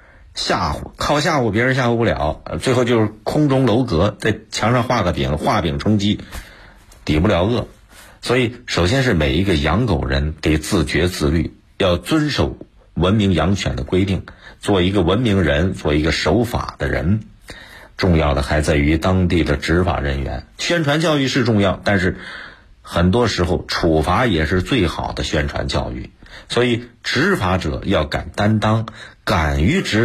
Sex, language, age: male, Chinese, 50-69